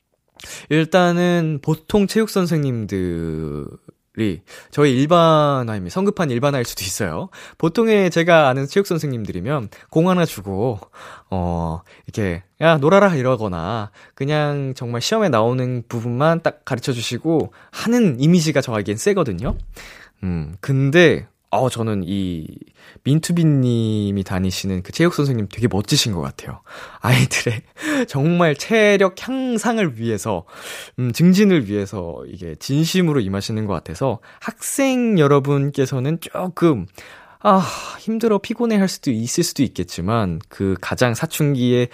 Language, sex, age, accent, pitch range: Korean, male, 20-39, native, 110-170 Hz